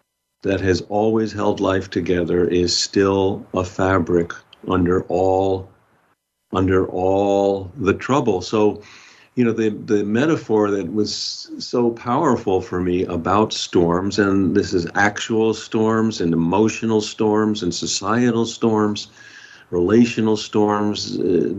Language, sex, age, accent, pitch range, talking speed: English, male, 50-69, American, 90-115 Hz, 120 wpm